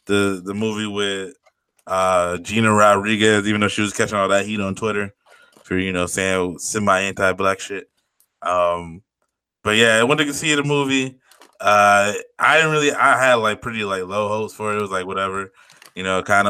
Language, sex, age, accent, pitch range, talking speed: English, male, 20-39, American, 95-110 Hz, 190 wpm